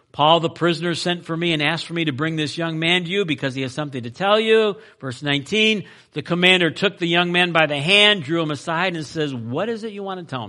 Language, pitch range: English, 125-190 Hz